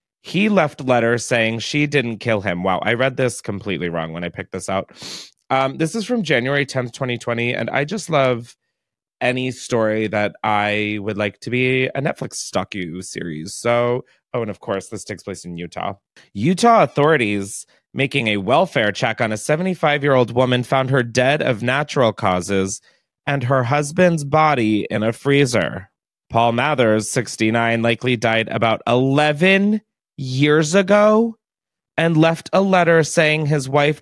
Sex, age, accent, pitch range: male, 30-49, American, 110-160 Hz